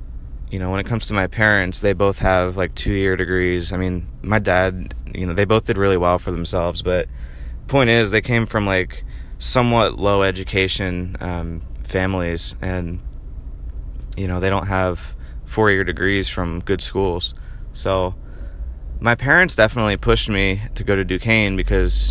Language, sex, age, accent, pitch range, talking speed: English, male, 20-39, American, 80-105 Hz, 170 wpm